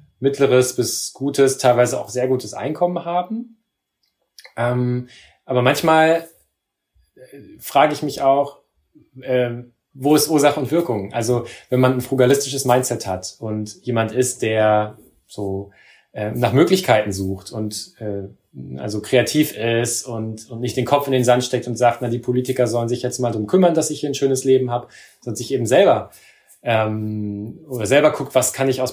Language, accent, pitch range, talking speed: German, German, 115-135 Hz, 170 wpm